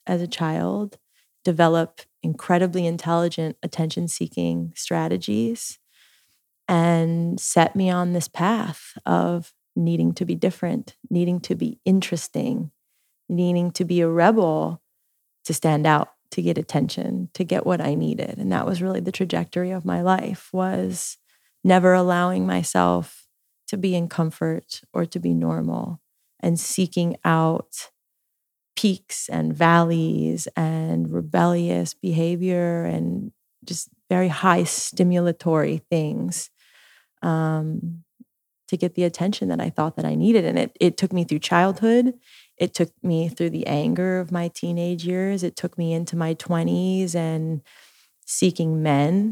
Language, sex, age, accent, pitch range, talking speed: English, female, 30-49, American, 150-180 Hz, 135 wpm